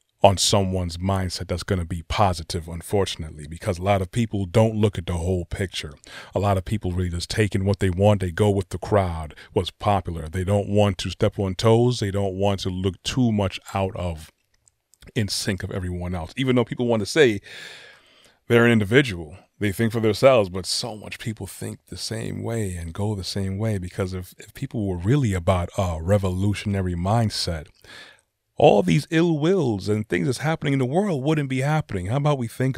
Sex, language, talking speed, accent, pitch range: male, English, 205 wpm, American, 95-125 Hz